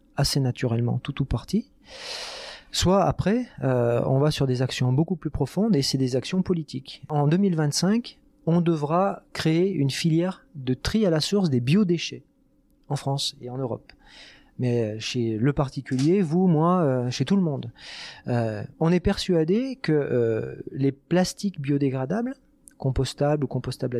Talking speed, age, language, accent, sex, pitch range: 160 wpm, 40-59, French, French, male, 135-185 Hz